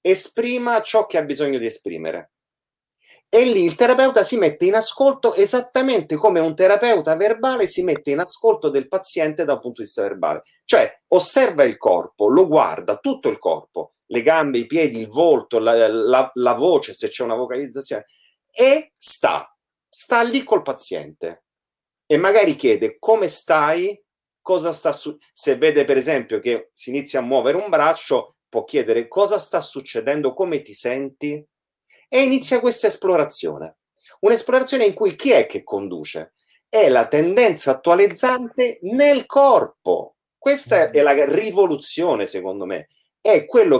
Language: Italian